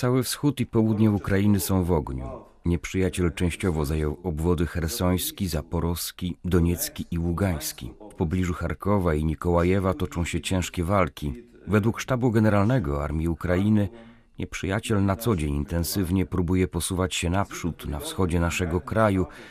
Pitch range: 90-115 Hz